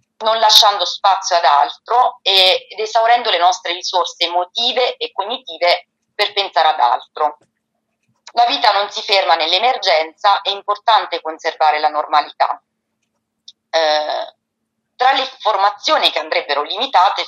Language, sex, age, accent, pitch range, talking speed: Italian, female, 30-49, native, 170-225 Hz, 125 wpm